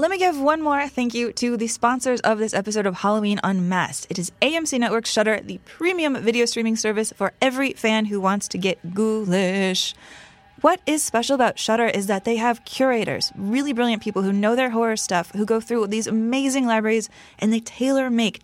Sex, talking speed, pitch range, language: female, 200 wpm, 185-230 Hz, English